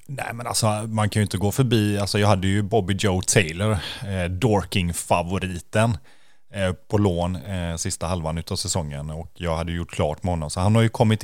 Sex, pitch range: male, 85-105 Hz